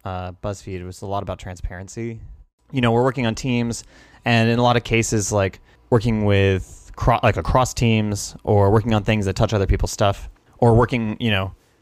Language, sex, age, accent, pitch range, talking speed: English, male, 20-39, American, 95-115 Hz, 195 wpm